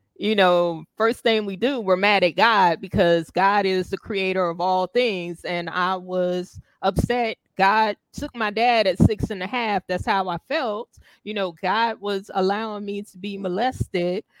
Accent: American